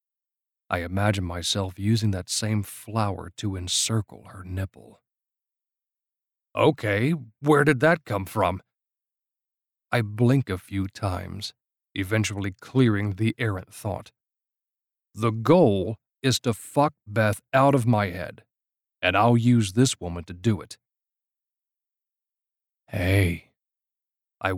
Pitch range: 95-120 Hz